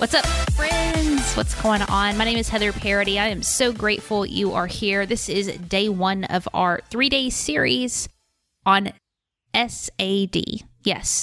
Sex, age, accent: female, 20-39, American